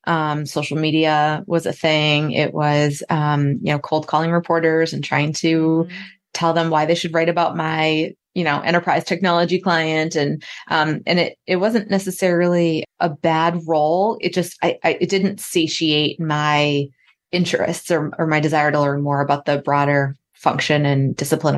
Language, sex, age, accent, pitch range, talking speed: English, female, 20-39, American, 145-175 Hz, 170 wpm